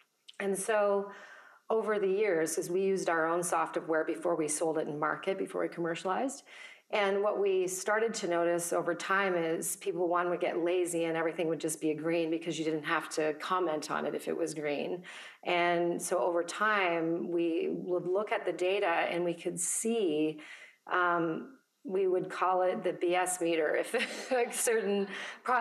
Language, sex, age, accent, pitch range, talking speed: English, female, 40-59, American, 165-185 Hz, 185 wpm